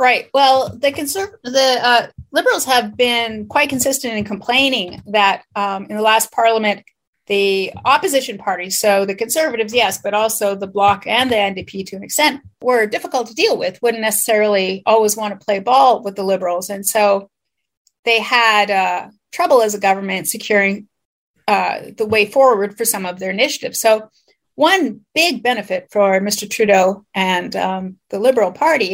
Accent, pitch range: American, 200-255 Hz